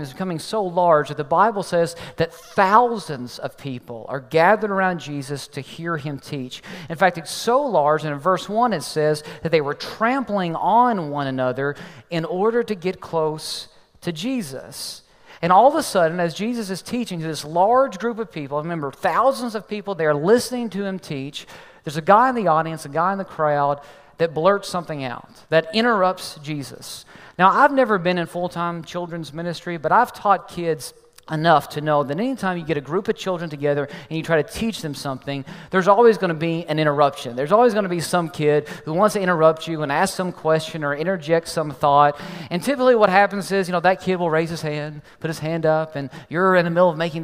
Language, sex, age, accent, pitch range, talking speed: English, male, 40-59, American, 155-190 Hz, 215 wpm